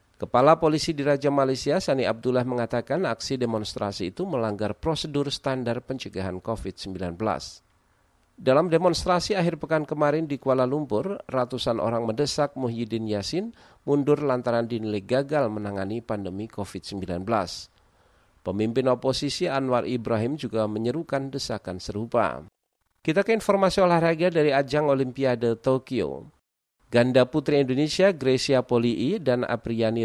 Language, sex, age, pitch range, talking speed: Indonesian, male, 40-59, 105-140 Hz, 115 wpm